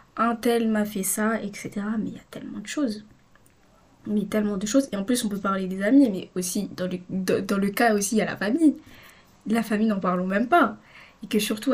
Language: French